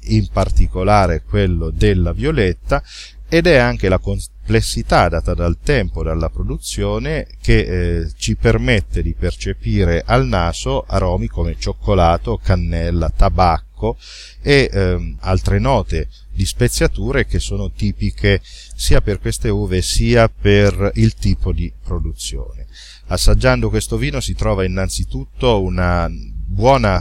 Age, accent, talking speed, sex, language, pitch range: 40-59, native, 125 wpm, male, Italian, 85-110 Hz